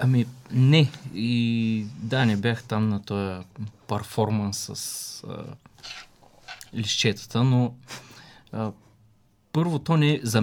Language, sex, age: English, male, 20-39